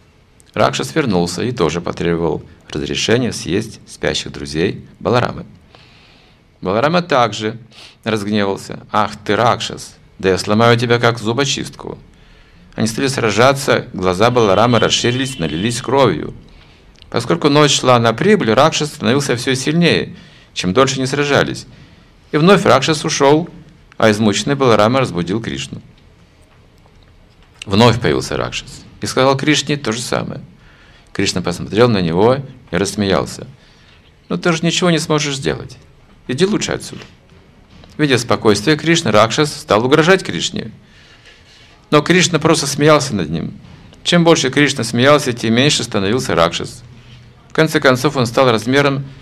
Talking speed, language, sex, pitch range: 130 wpm, Russian, male, 110-150 Hz